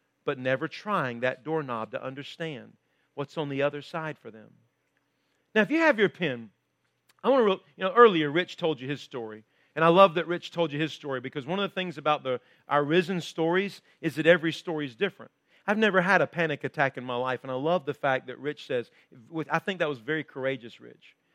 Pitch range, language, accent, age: 140-190 Hz, English, American, 40-59